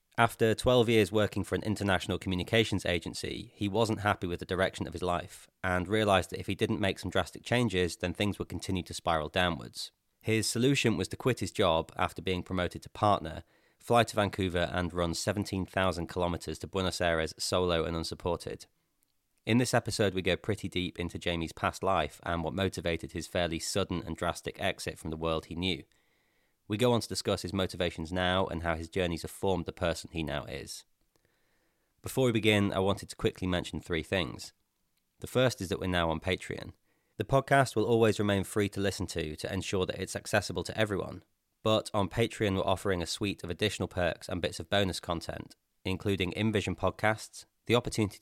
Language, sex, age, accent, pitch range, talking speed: English, male, 30-49, British, 85-105 Hz, 195 wpm